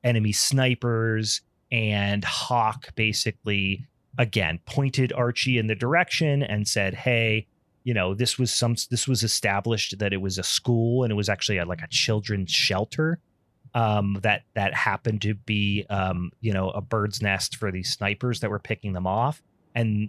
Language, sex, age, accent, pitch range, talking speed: English, male, 30-49, American, 100-120 Hz, 165 wpm